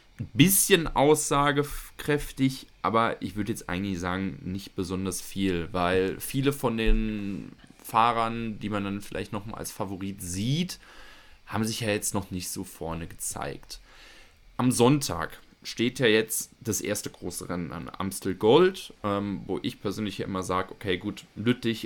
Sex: male